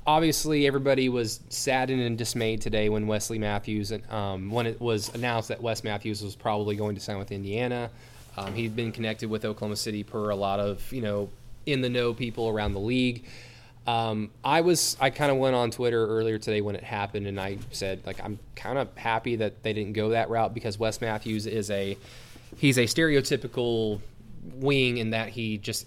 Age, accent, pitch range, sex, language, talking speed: 20-39, American, 105-125 Hz, male, English, 200 wpm